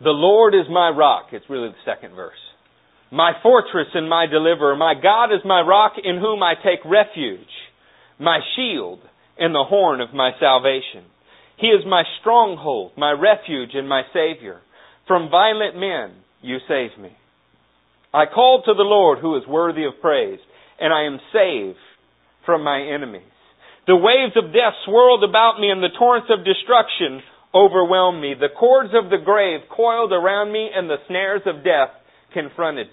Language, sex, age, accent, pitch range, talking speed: English, male, 40-59, American, 130-210 Hz, 170 wpm